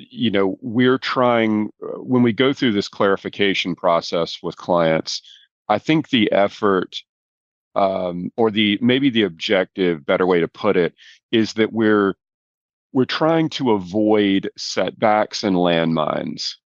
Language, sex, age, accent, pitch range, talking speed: English, male, 40-59, American, 90-105 Hz, 135 wpm